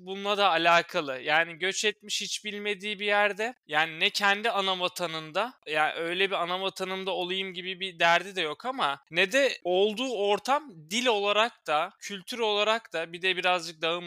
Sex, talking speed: male, 170 wpm